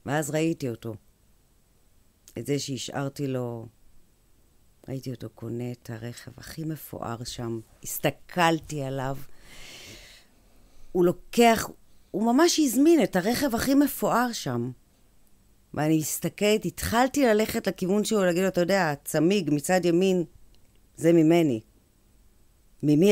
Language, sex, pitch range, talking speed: Hebrew, female, 115-185 Hz, 110 wpm